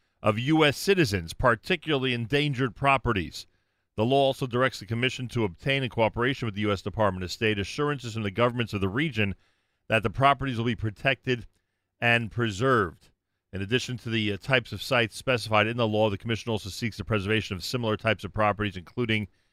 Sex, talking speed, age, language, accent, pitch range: male, 185 wpm, 40-59, English, American, 100-125 Hz